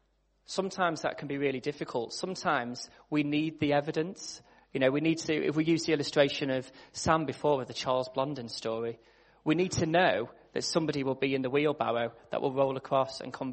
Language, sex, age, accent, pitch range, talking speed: English, male, 20-39, British, 120-160 Hz, 205 wpm